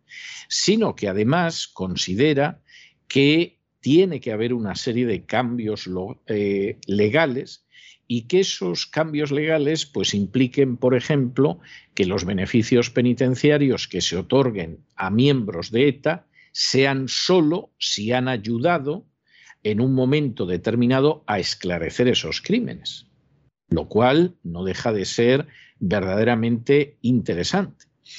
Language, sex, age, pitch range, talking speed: Spanish, male, 50-69, 110-145 Hz, 120 wpm